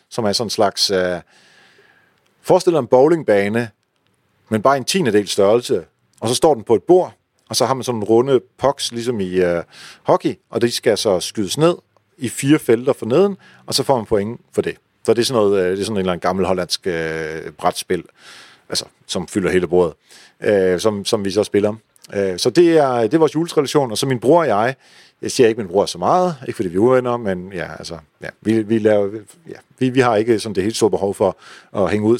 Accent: native